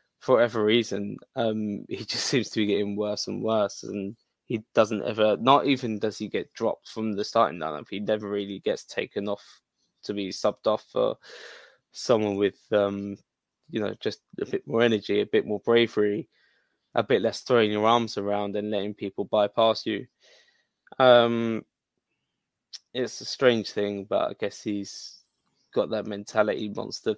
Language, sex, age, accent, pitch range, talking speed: English, male, 10-29, British, 105-120 Hz, 170 wpm